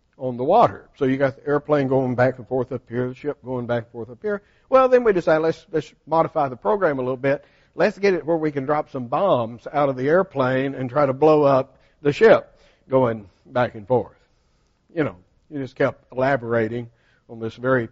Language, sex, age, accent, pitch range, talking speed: English, male, 60-79, American, 125-165 Hz, 225 wpm